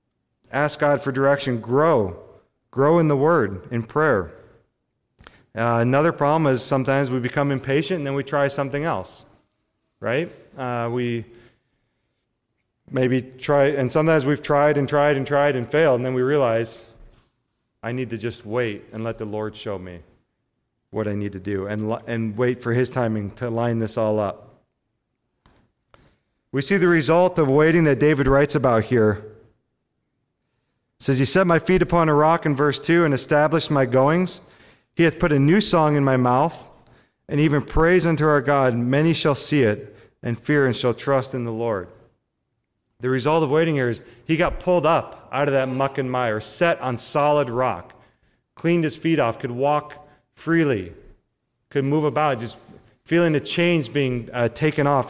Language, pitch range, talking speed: English, 120-150 Hz, 180 wpm